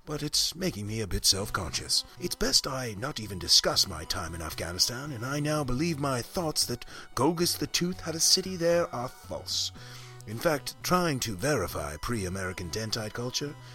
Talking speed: 180 wpm